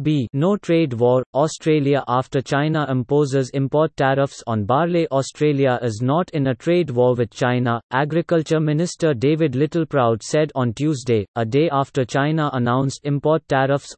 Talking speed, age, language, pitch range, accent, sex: 150 wpm, 30-49, English, 125-155 Hz, Indian, male